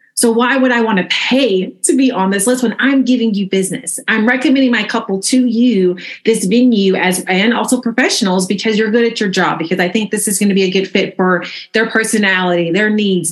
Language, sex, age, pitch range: English, female, 30-49, 180-235 Hz